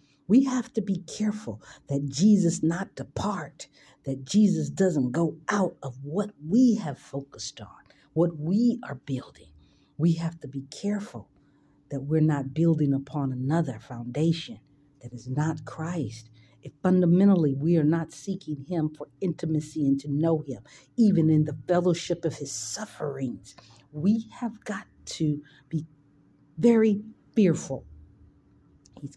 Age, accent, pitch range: 50-69, American, 135-170 Hz